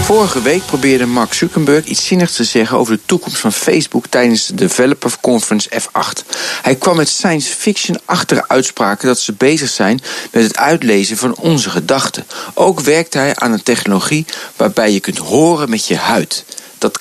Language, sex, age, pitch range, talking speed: Dutch, male, 50-69, 125-180 Hz, 175 wpm